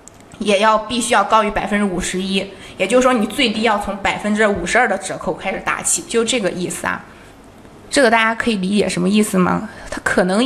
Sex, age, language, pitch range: female, 20-39, Chinese, 180-225 Hz